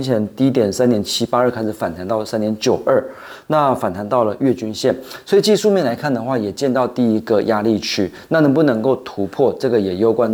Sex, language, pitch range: male, Chinese, 105-130 Hz